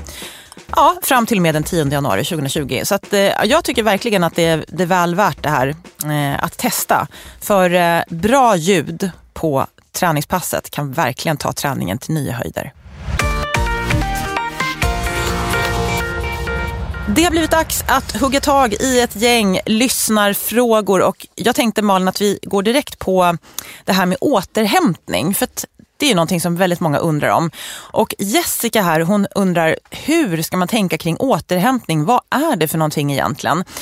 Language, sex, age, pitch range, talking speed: English, female, 30-49, 160-235 Hz, 160 wpm